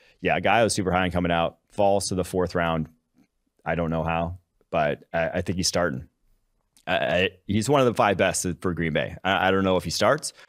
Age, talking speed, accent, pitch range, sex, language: 30-49, 235 wpm, American, 85-110 Hz, male, English